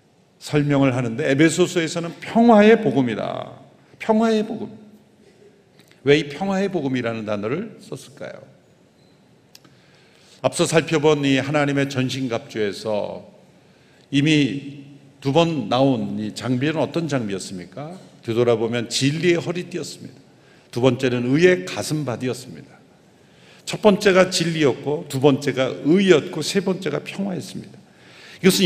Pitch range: 140-195 Hz